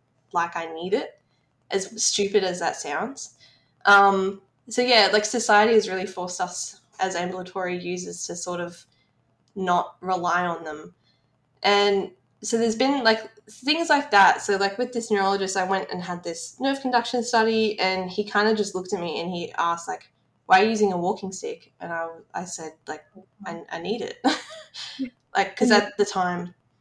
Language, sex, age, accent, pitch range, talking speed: English, female, 10-29, Australian, 175-225 Hz, 185 wpm